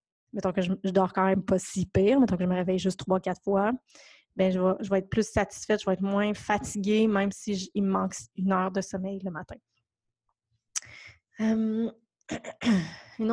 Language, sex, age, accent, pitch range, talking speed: French, female, 20-39, Canadian, 190-220 Hz, 205 wpm